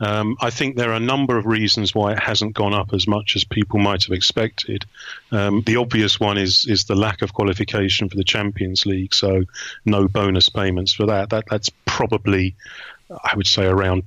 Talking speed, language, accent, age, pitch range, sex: 205 wpm, English, British, 40-59, 95-110 Hz, male